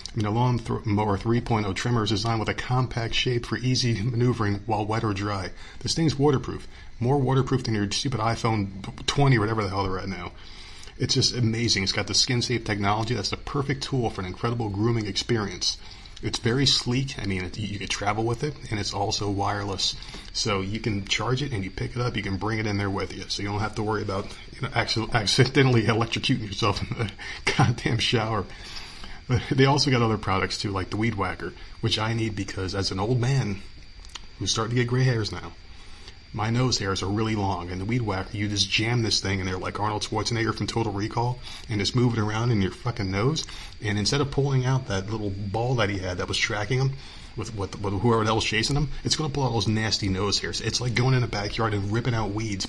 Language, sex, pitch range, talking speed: English, male, 100-120 Hz, 230 wpm